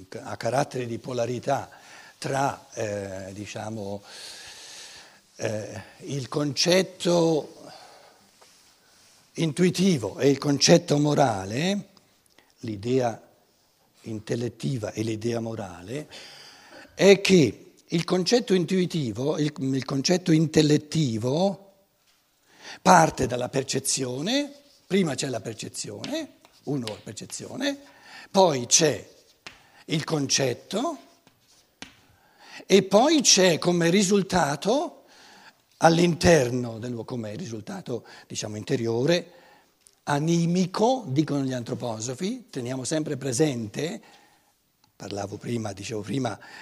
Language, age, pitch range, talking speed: Italian, 60-79, 115-170 Hz, 85 wpm